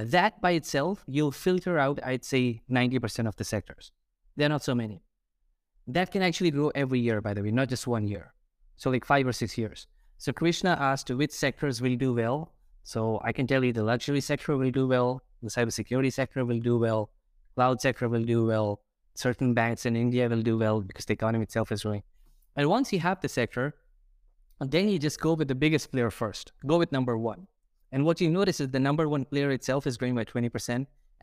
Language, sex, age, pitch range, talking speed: English, male, 20-39, 115-145 Hz, 215 wpm